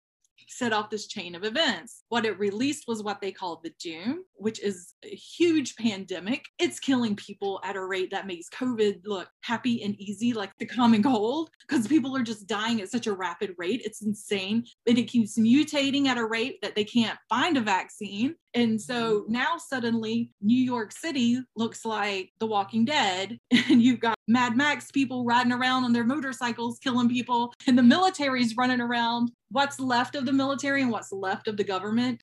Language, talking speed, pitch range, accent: English, 190 wpm, 200-245 Hz, American